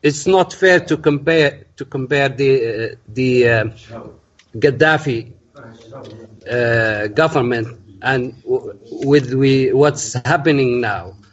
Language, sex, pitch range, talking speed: English, male, 125-165 Hz, 110 wpm